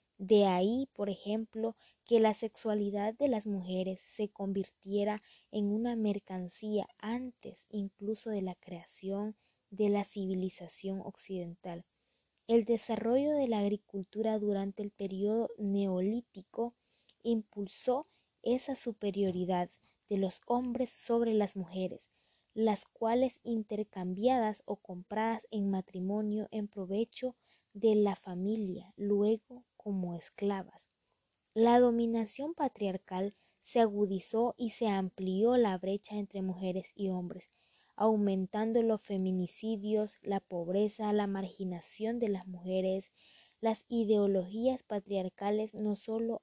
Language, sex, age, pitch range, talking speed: Spanish, female, 20-39, 195-225 Hz, 110 wpm